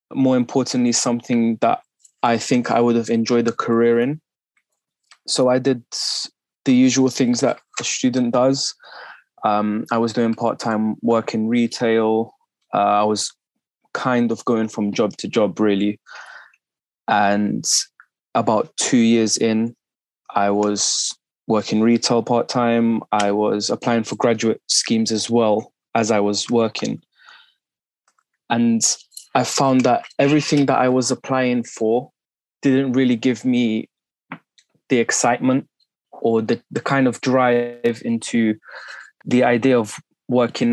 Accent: British